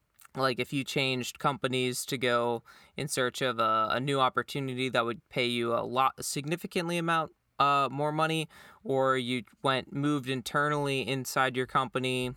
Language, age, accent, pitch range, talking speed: English, 20-39, American, 125-155 Hz, 165 wpm